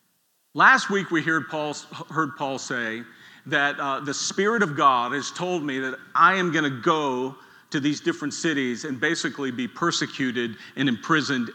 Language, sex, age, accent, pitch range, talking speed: English, male, 50-69, American, 140-185 Hz, 165 wpm